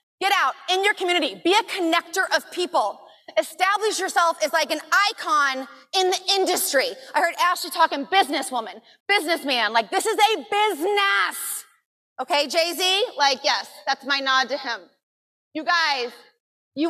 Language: English